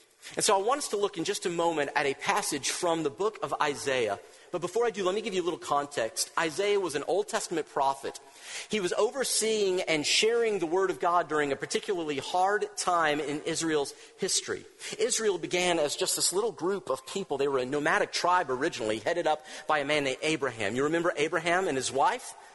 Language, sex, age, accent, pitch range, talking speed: English, male, 40-59, American, 150-220 Hz, 215 wpm